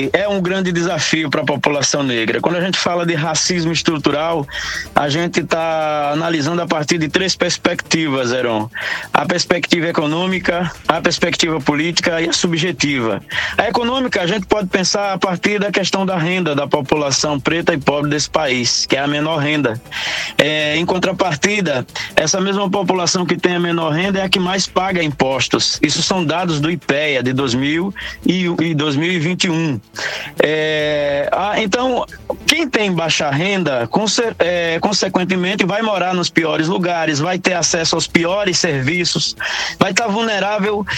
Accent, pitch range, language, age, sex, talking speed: Brazilian, 155-195 Hz, Portuguese, 20-39, male, 150 wpm